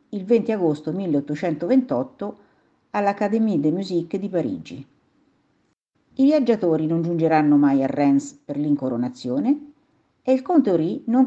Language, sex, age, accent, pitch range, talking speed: Italian, female, 50-69, native, 155-255 Hz, 120 wpm